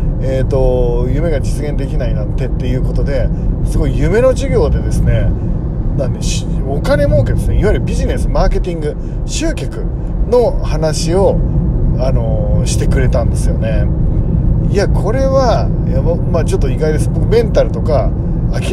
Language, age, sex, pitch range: Japanese, 40-59, male, 115-150 Hz